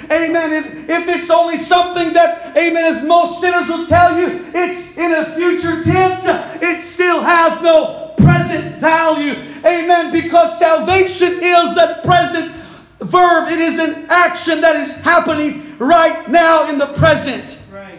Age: 40-59